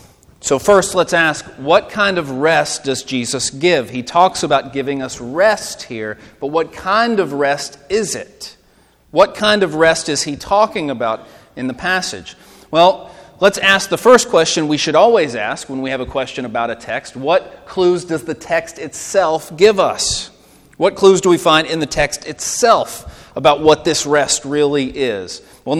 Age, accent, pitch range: 40-59, American, 130-175 Hz